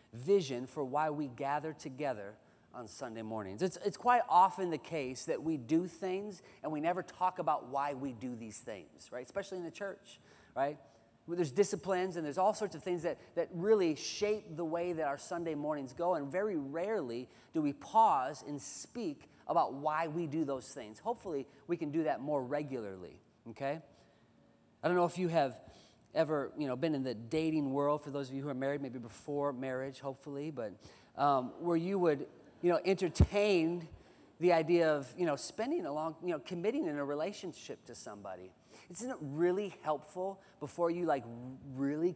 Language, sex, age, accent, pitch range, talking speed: English, male, 30-49, American, 140-180 Hz, 190 wpm